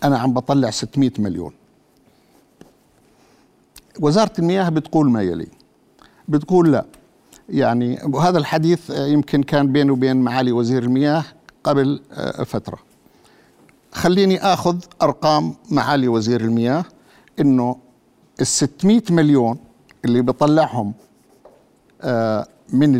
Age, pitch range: 50-69, 115-155 Hz